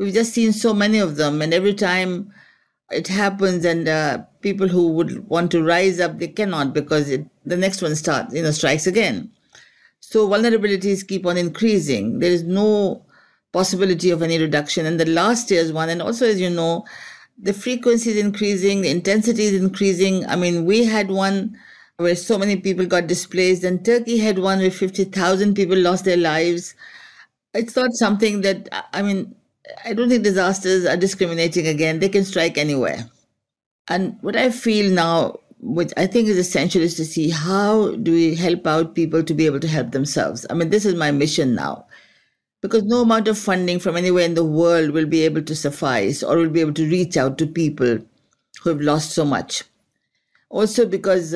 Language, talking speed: English, 190 wpm